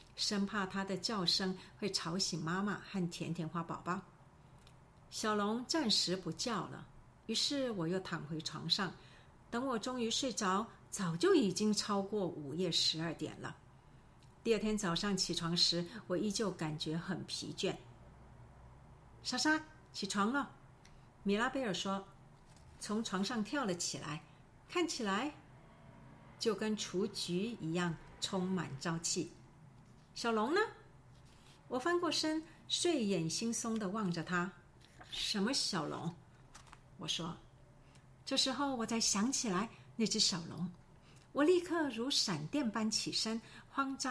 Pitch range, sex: 170-230 Hz, female